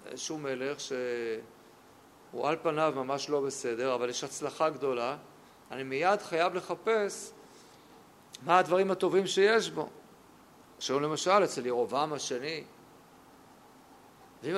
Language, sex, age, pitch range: Hebrew, male, 50-69, 140-200 Hz